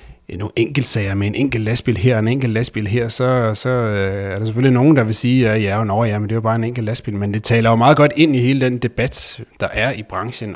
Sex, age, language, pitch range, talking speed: male, 30-49, Danish, 95-120 Hz, 260 wpm